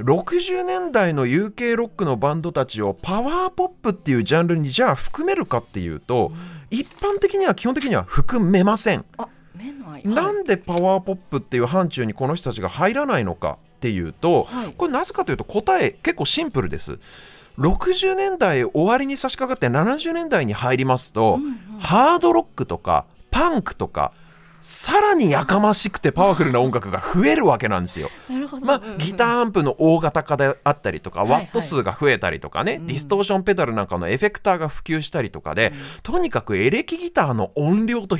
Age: 30-49